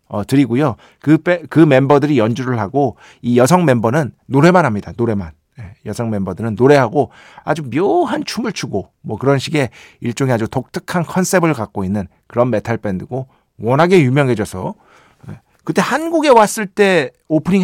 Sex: male